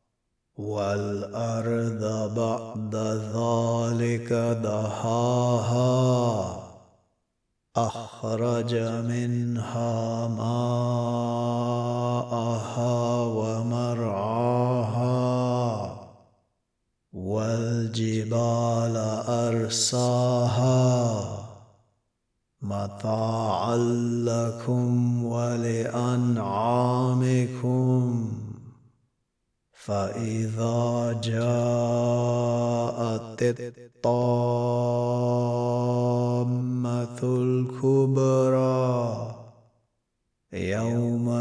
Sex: male